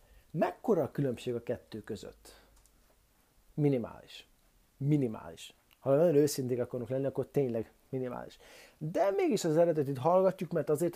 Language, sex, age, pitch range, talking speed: Hungarian, male, 30-49, 125-150 Hz, 125 wpm